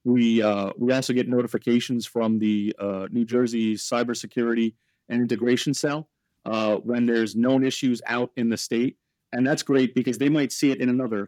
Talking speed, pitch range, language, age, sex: 180 wpm, 110-130 Hz, English, 40-59, male